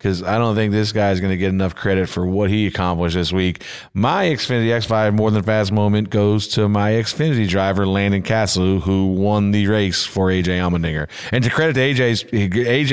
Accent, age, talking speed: American, 40-59, 205 wpm